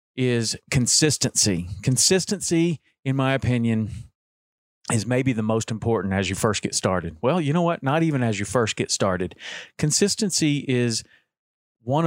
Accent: American